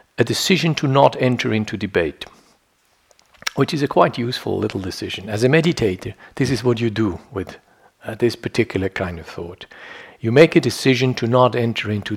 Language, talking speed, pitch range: English, 180 wpm, 105-130 Hz